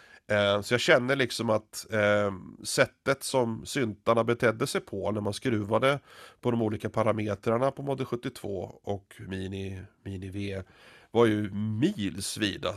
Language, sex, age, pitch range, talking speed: Swedish, male, 30-49, 100-120 Hz, 130 wpm